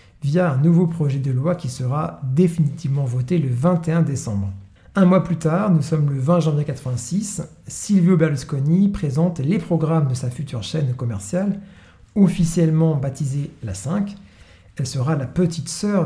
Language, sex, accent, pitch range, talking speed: French, male, French, 135-175 Hz, 155 wpm